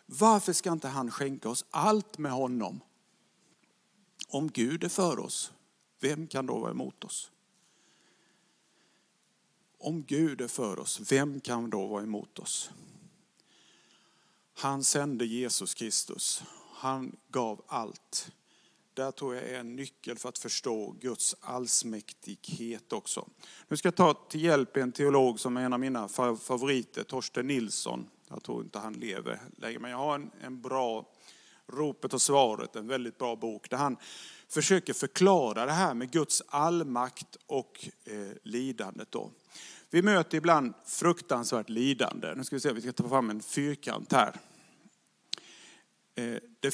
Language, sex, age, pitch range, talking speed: English, male, 50-69, 120-155 Hz, 145 wpm